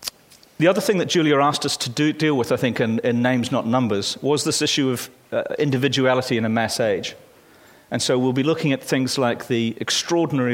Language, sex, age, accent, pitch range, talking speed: English, male, 40-59, British, 120-145 Hz, 210 wpm